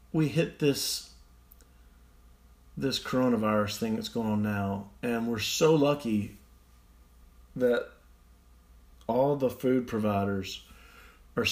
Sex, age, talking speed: male, 40-59, 105 wpm